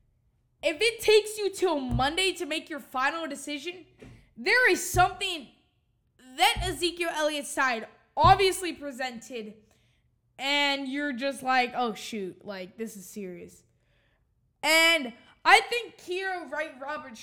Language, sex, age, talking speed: English, female, 10-29, 120 wpm